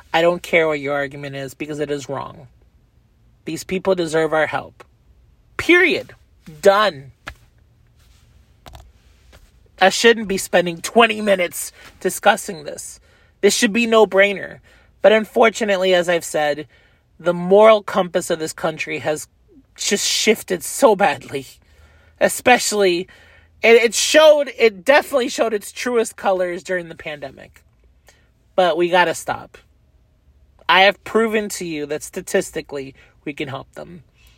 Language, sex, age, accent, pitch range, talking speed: English, male, 30-49, American, 140-195 Hz, 130 wpm